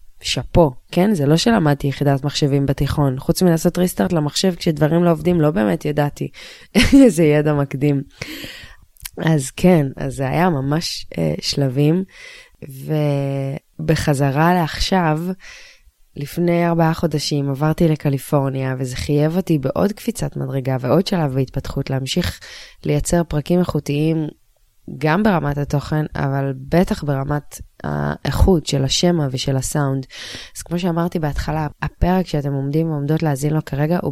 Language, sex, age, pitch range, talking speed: Hebrew, female, 20-39, 140-170 Hz, 130 wpm